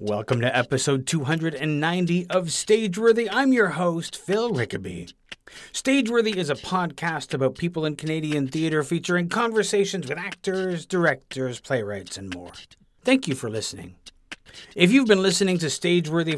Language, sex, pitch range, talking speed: English, male, 135-190 Hz, 140 wpm